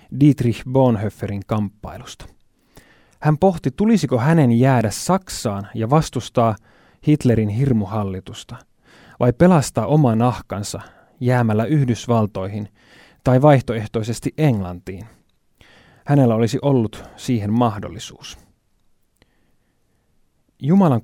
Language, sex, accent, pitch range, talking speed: Finnish, male, native, 105-140 Hz, 80 wpm